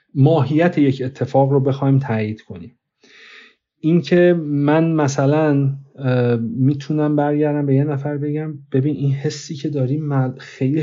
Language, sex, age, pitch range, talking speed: Persian, male, 40-59, 130-160 Hz, 120 wpm